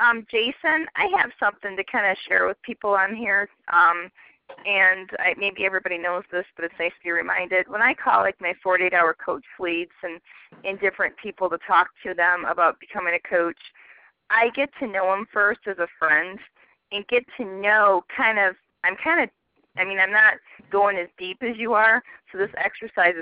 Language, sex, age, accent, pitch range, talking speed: English, female, 20-39, American, 180-220 Hz, 200 wpm